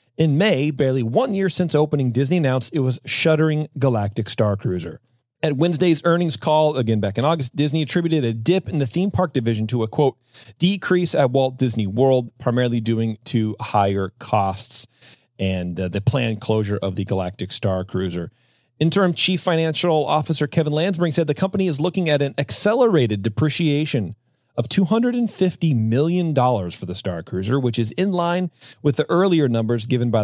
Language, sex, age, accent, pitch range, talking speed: English, male, 30-49, American, 110-155 Hz, 175 wpm